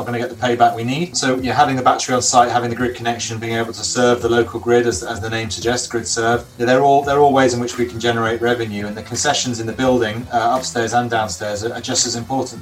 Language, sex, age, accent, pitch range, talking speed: English, male, 30-49, British, 115-130 Hz, 275 wpm